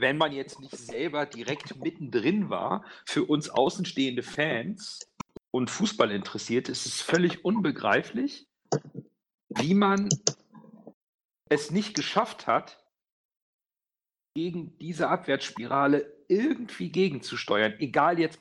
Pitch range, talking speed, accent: 130-165 Hz, 105 wpm, German